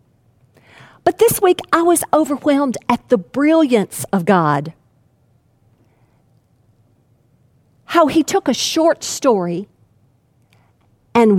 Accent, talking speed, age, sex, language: American, 95 wpm, 50-69, female, English